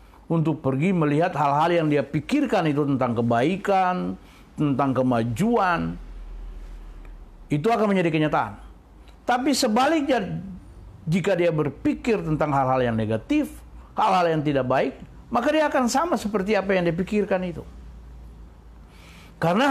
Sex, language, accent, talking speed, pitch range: male, Indonesian, native, 120 wpm, 115-190 Hz